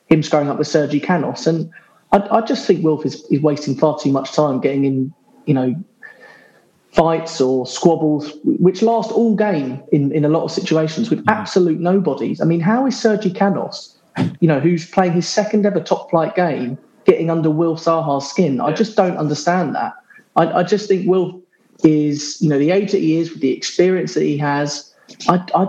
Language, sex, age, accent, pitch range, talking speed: English, male, 30-49, British, 140-180 Hz, 200 wpm